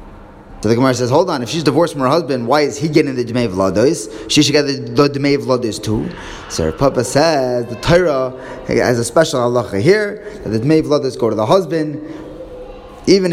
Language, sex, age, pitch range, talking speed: English, male, 20-39, 115-155 Hz, 205 wpm